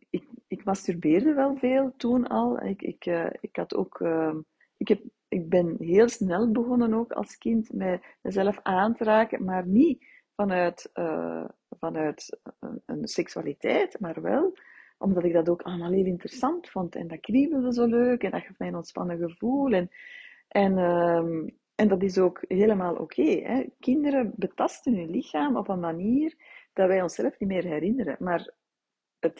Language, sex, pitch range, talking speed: Dutch, female, 180-250 Hz, 165 wpm